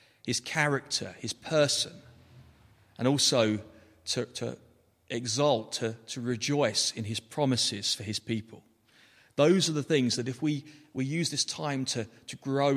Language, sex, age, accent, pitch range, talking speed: English, male, 40-59, British, 110-135 Hz, 150 wpm